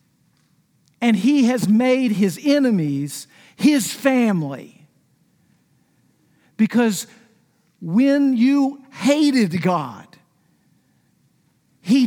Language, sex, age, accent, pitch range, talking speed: English, male, 50-69, American, 180-245 Hz, 70 wpm